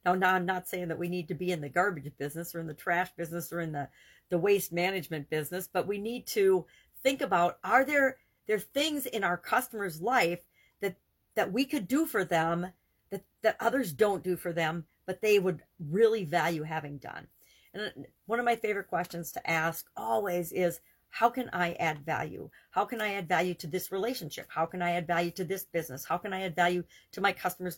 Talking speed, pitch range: 220 wpm, 170-210 Hz